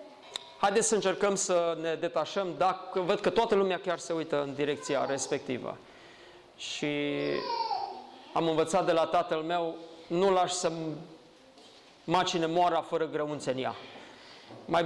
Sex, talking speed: male, 135 wpm